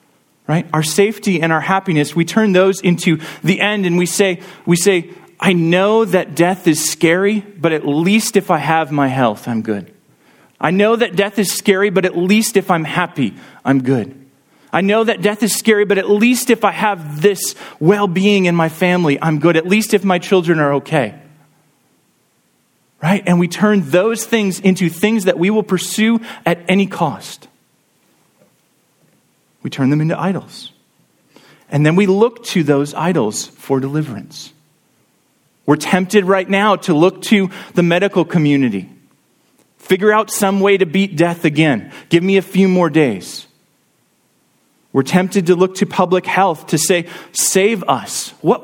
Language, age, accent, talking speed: English, 30-49, American, 170 wpm